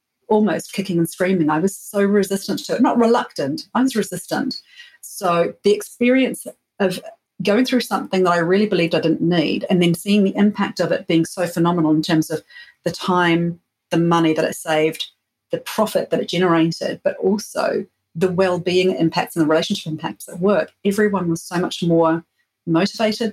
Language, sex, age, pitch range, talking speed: English, female, 40-59, 170-210 Hz, 185 wpm